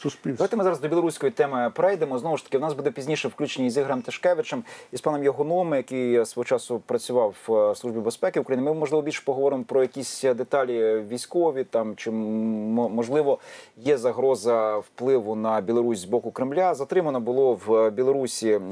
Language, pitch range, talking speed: Ukrainian, 115-170 Hz, 165 wpm